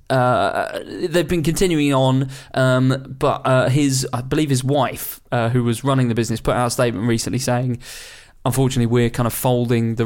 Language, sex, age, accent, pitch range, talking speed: English, male, 20-39, British, 120-135 Hz, 185 wpm